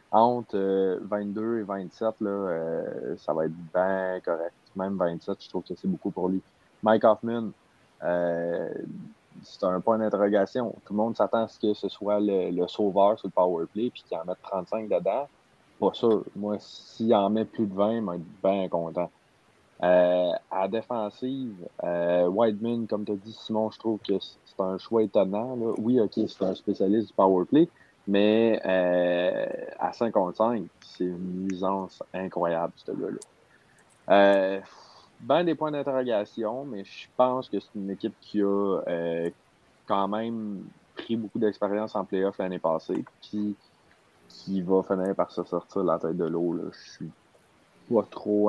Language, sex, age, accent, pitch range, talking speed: French, male, 30-49, Canadian, 90-110 Hz, 175 wpm